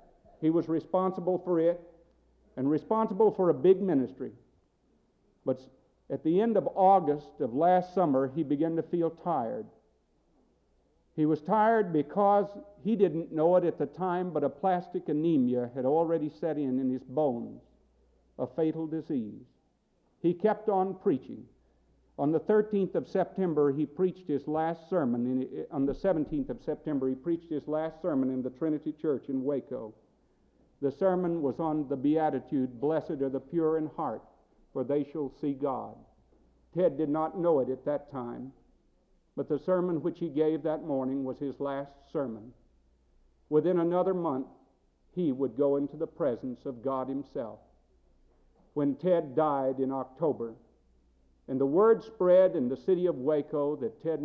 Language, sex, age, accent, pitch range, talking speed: English, male, 60-79, American, 135-175 Hz, 160 wpm